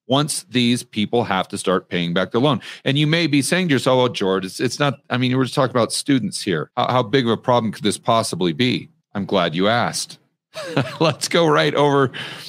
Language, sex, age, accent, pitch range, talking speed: English, male, 40-59, American, 115-150 Hz, 235 wpm